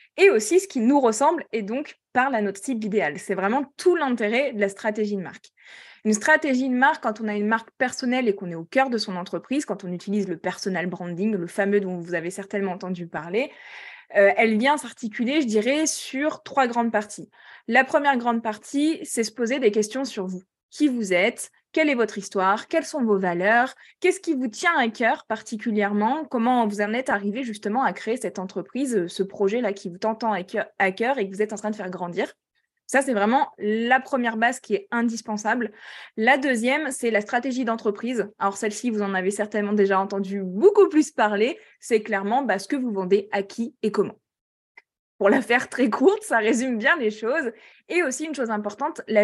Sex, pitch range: female, 200-260 Hz